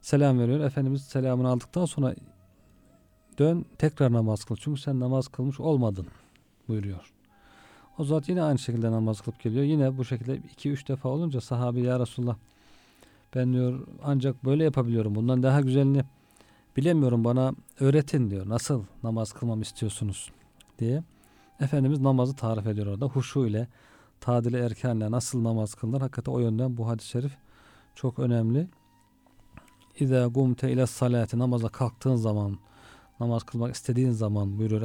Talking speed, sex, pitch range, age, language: 140 wpm, male, 110-135 Hz, 40-59, Turkish